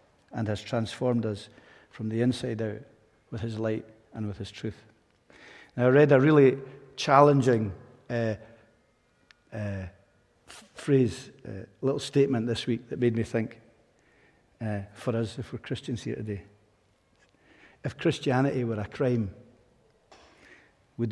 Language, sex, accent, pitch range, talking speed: English, male, British, 110-130 Hz, 135 wpm